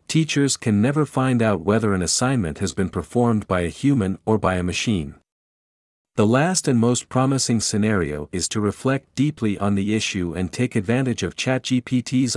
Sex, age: male, 50-69